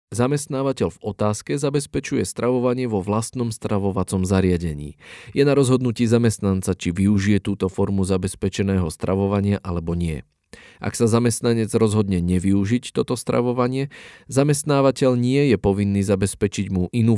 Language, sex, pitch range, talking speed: Slovak, male, 95-125 Hz, 120 wpm